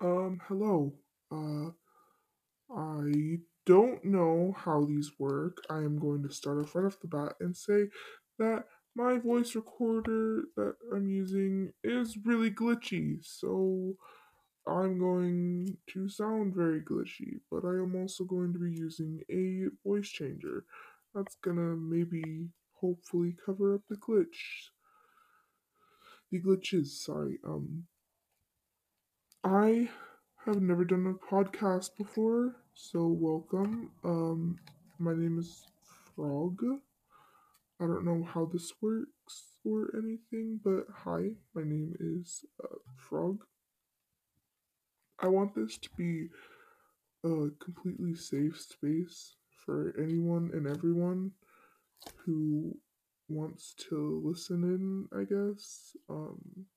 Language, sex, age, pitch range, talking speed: English, female, 20-39, 165-215 Hz, 115 wpm